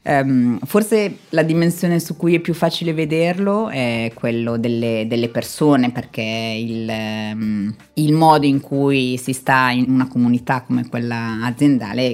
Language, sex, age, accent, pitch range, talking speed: Italian, female, 30-49, native, 125-145 Hz, 140 wpm